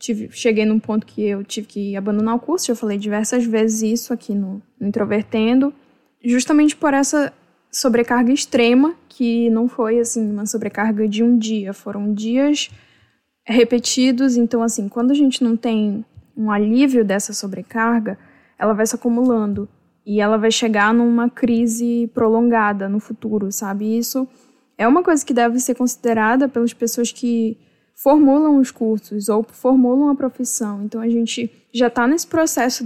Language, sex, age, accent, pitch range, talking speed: Portuguese, female, 10-29, Brazilian, 220-255 Hz, 155 wpm